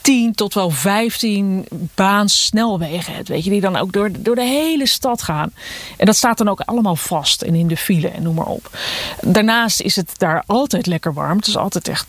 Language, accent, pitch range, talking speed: Dutch, Dutch, 175-230 Hz, 200 wpm